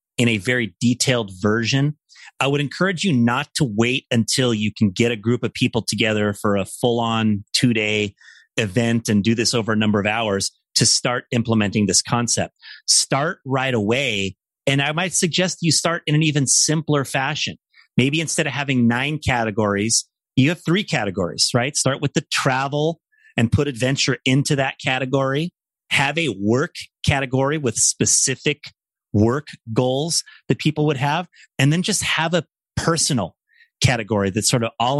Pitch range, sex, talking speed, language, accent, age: 115-140 Hz, male, 165 wpm, English, American, 30-49